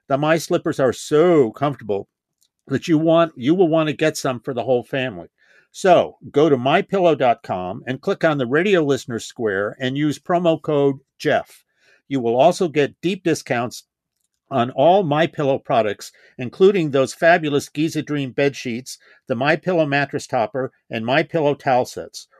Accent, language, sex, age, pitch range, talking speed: American, English, male, 50-69, 125-155 Hz, 160 wpm